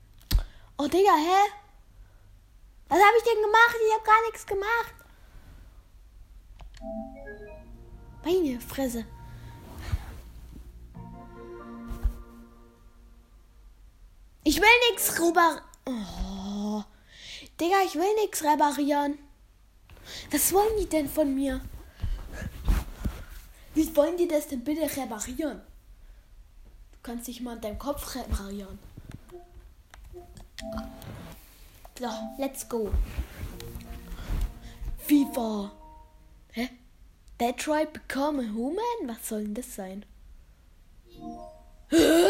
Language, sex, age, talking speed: German, female, 10-29, 90 wpm